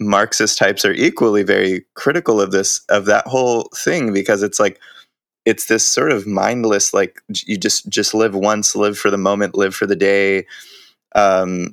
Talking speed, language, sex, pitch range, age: 180 wpm, English, male, 95-105 Hz, 20-39